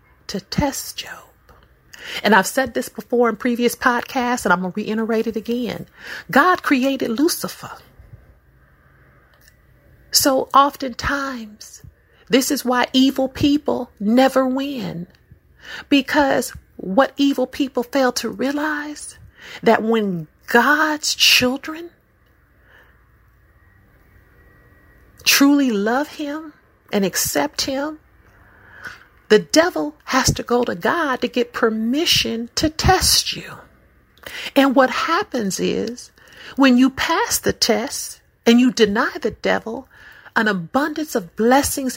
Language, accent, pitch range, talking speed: English, American, 215-280 Hz, 110 wpm